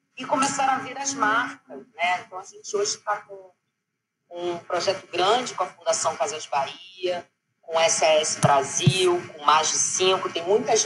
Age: 40-59